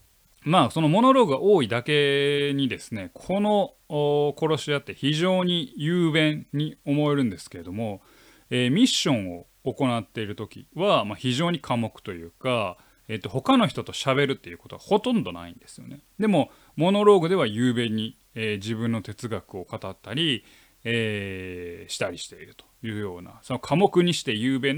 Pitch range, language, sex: 110-160 Hz, Japanese, male